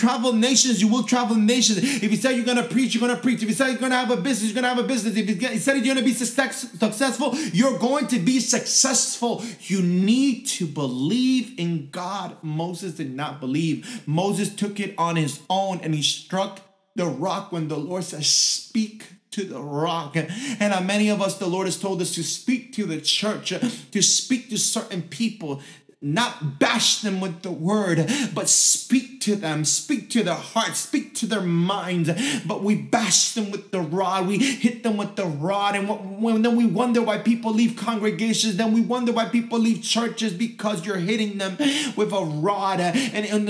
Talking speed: 205 wpm